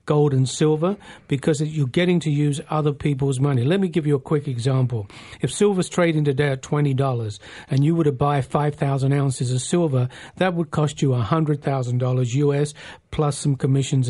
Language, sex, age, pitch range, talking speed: English, male, 50-69, 135-170 Hz, 195 wpm